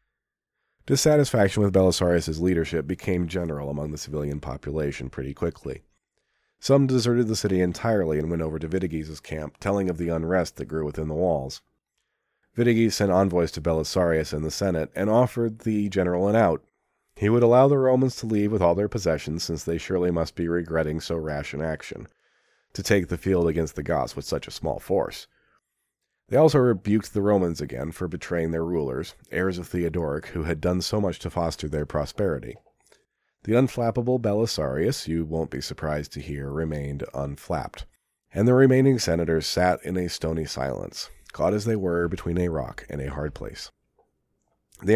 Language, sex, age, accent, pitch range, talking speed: English, male, 40-59, American, 80-105 Hz, 180 wpm